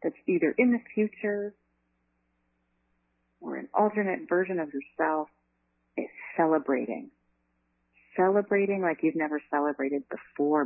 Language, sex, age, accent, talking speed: English, female, 40-59, American, 105 wpm